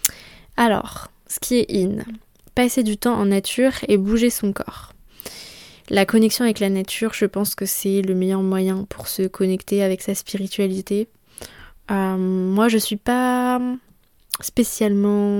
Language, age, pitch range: French, 20-39, 195-220 Hz